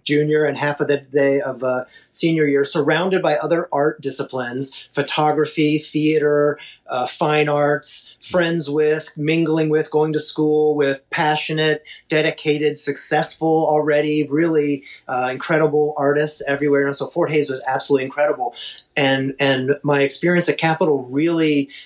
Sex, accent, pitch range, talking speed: male, American, 140-165 Hz, 140 wpm